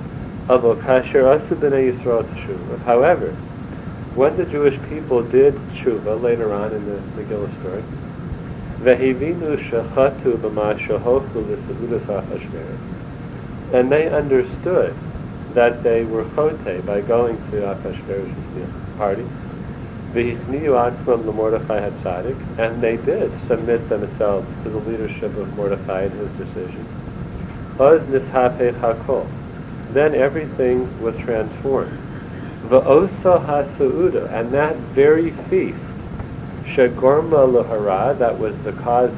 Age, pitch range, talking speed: 40-59, 115-140 Hz, 85 wpm